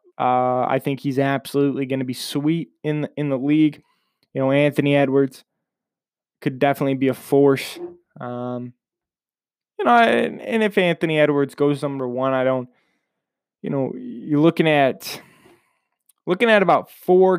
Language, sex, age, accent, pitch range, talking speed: English, male, 20-39, American, 130-145 Hz, 150 wpm